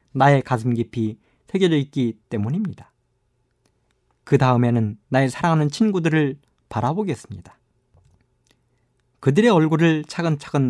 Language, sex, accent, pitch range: Korean, male, native, 115-155 Hz